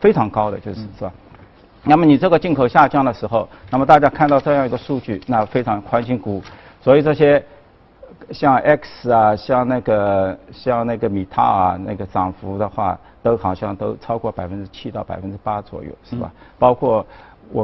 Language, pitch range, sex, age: Chinese, 100-130 Hz, male, 50-69